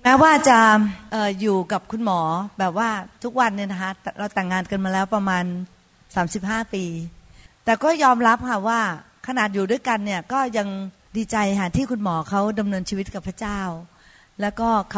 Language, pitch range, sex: Thai, 195-235 Hz, female